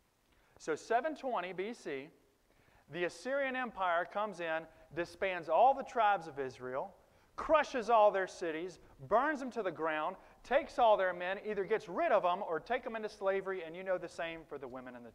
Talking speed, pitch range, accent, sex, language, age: 185 wpm, 145-205 Hz, American, male, English, 40-59